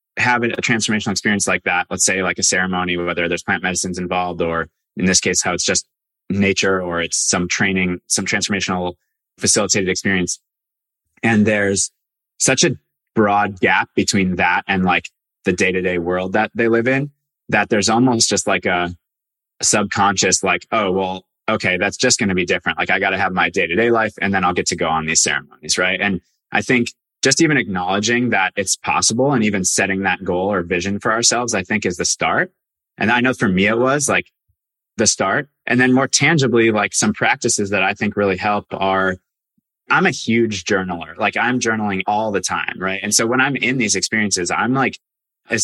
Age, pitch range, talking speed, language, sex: 20-39, 90-115 Hz, 200 wpm, English, male